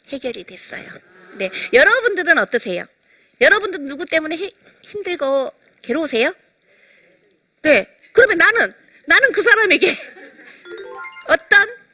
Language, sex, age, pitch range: Korean, female, 40-59, 240-385 Hz